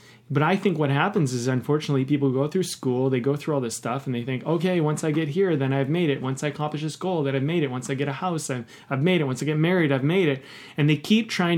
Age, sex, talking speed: 30-49, male, 300 wpm